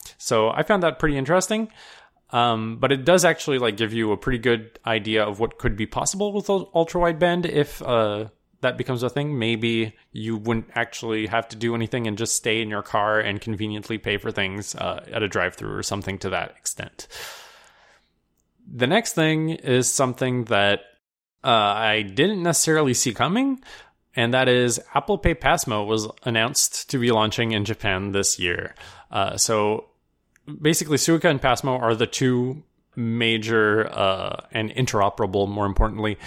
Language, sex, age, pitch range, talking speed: English, male, 20-39, 110-135 Hz, 170 wpm